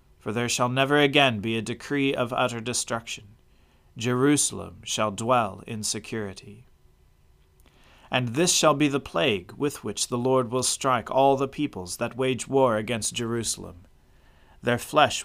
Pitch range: 100-130 Hz